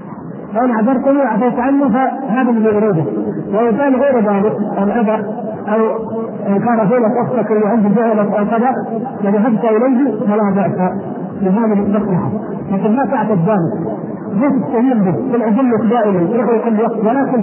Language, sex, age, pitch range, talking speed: Arabic, male, 50-69, 200-245 Hz, 130 wpm